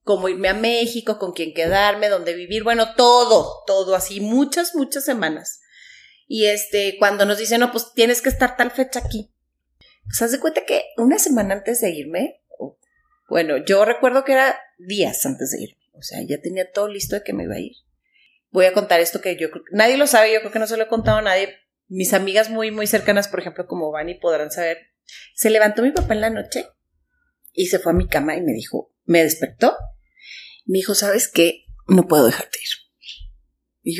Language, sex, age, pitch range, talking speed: Spanish, female, 30-49, 195-255 Hz, 215 wpm